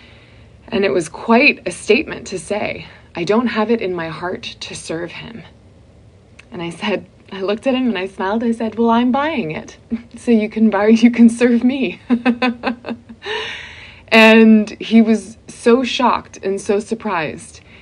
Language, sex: English, female